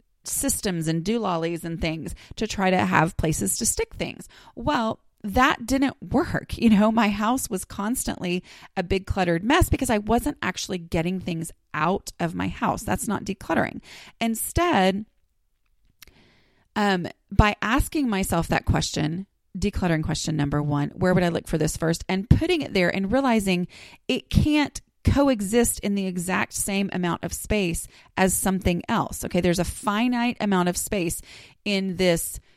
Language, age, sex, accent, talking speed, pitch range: English, 30-49, female, American, 160 wpm, 170-220 Hz